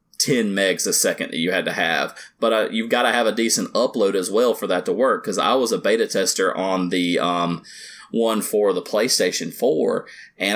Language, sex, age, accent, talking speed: English, male, 30-49, American, 220 wpm